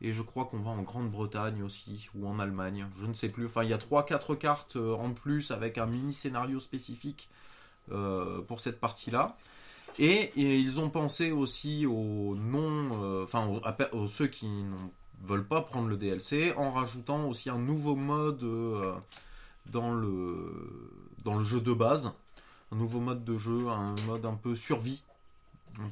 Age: 20-39